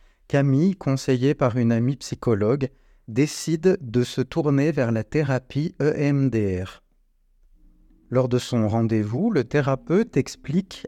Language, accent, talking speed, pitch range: French, French, 115 wpm, 110-150 Hz